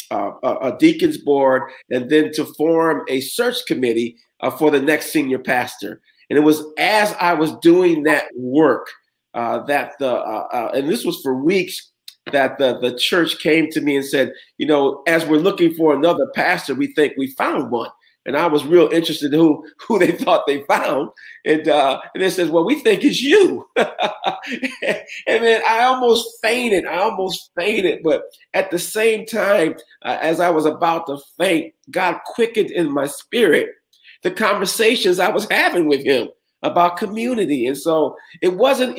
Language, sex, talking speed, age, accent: English, male, 185 wpm, 50-69, American